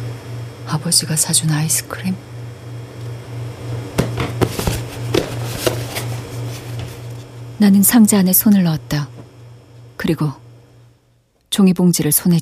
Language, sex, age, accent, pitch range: Korean, female, 40-59, native, 135-210 Hz